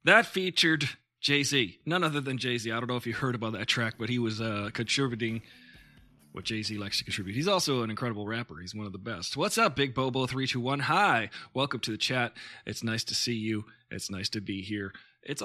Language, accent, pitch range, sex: English, American, 110-140 Hz, male